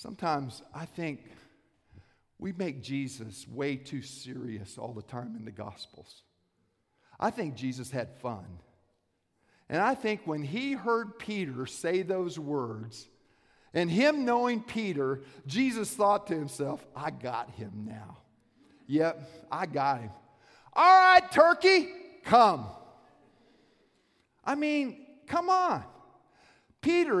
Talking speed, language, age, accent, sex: 120 wpm, English, 50-69, American, male